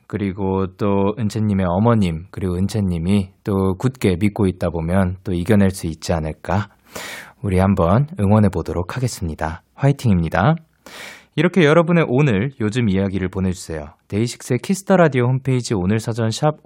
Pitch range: 95-145 Hz